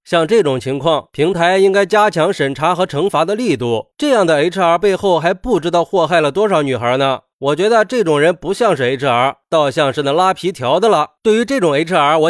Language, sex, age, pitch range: Chinese, male, 20-39, 145-210 Hz